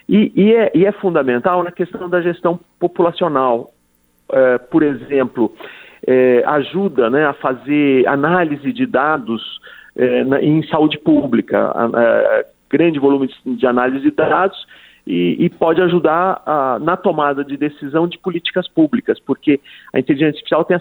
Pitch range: 130-180 Hz